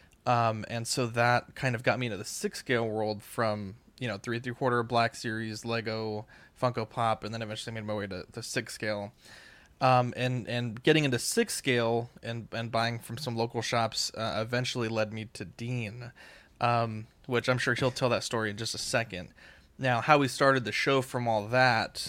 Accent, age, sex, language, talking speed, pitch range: American, 20-39, male, English, 205 wpm, 110-130 Hz